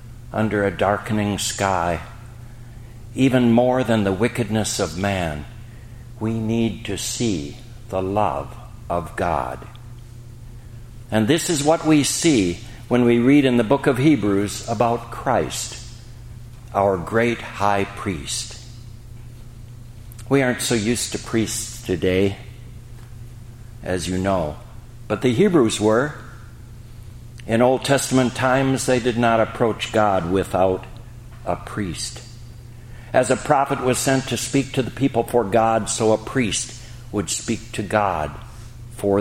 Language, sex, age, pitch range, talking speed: English, male, 60-79, 110-120 Hz, 130 wpm